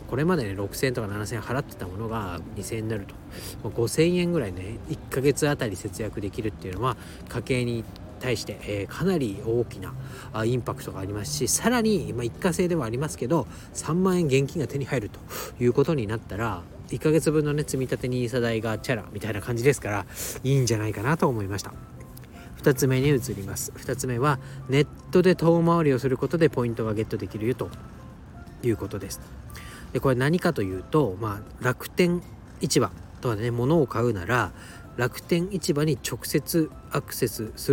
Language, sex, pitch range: Japanese, male, 105-145 Hz